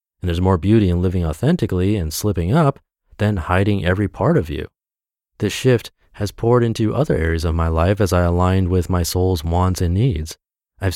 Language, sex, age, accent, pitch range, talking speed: English, male, 30-49, American, 85-110 Hz, 195 wpm